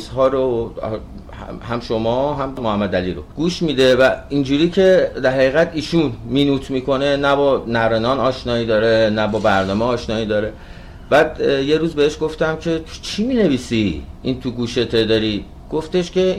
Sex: male